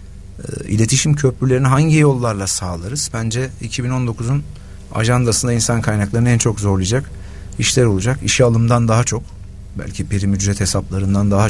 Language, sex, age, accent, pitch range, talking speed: Turkish, male, 50-69, native, 95-130 Hz, 125 wpm